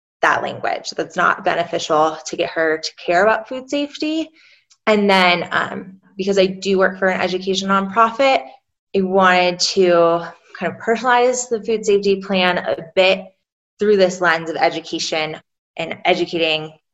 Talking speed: 150 wpm